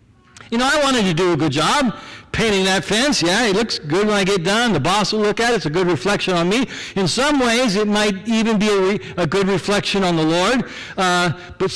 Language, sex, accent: English, male, American